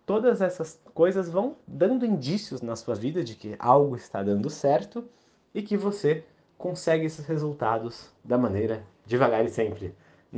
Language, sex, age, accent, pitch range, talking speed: Portuguese, male, 20-39, Brazilian, 105-155 Hz, 155 wpm